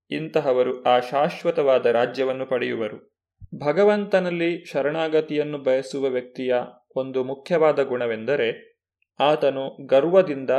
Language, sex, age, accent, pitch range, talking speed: Kannada, male, 30-49, native, 130-165 Hz, 80 wpm